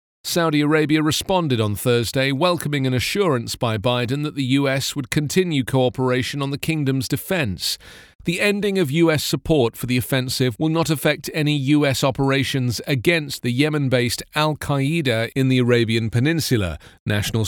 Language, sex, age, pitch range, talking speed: English, male, 40-59, 115-155 Hz, 150 wpm